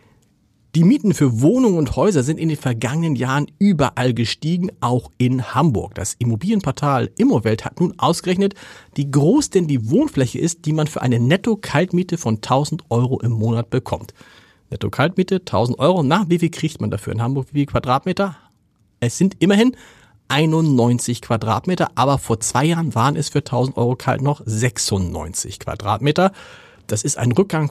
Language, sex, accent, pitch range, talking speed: German, male, German, 115-155 Hz, 160 wpm